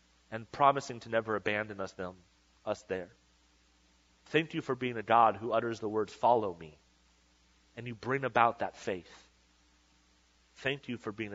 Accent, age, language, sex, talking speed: American, 30-49, English, male, 165 wpm